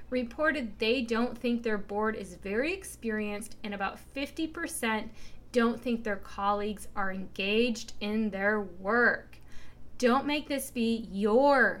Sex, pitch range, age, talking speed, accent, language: female, 205-265 Hz, 20-39, 130 wpm, American, English